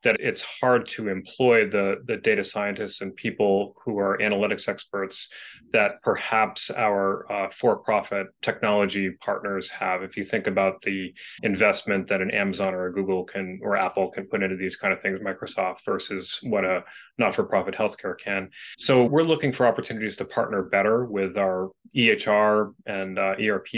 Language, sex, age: English, male, 30-49